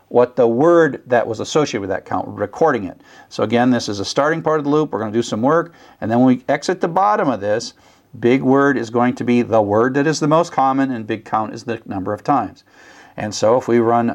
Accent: American